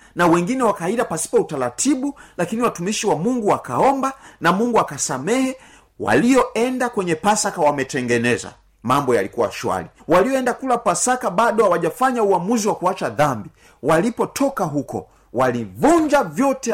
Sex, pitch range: male, 135-215 Hz